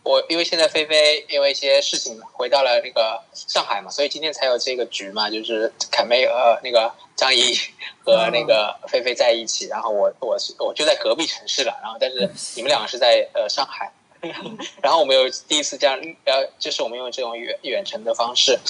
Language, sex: Chinese, male